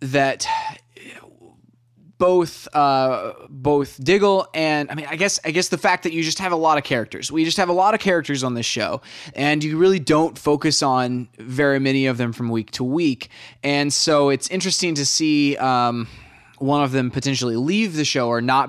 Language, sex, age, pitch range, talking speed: English, male, 20-39, 130-155 Hz, 200 wpm